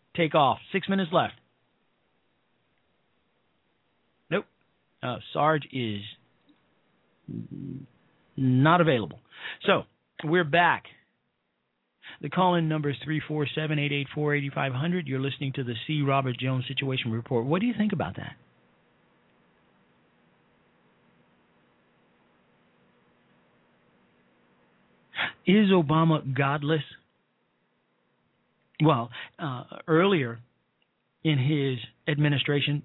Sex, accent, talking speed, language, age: male, American, 80 wpm, English, 40-59